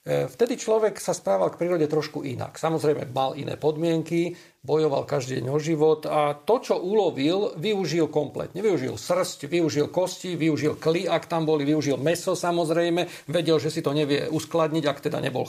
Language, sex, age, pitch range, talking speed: Slovak, male, 40-59, 150-190 Hz, 165 wpm